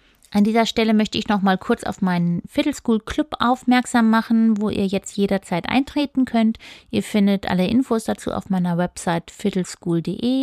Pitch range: 190-245 Hz